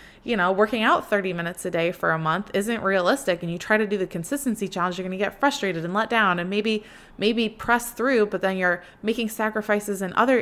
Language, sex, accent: English, female, American